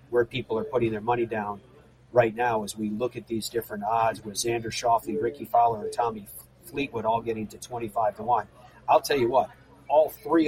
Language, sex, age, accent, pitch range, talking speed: English, male, 40-59, American, 110-135 Hz, 205 wpm